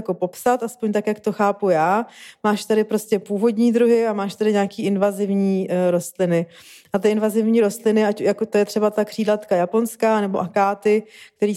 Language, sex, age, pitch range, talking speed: Czech, female, 20-39, 195-215 Hz, 175 wpm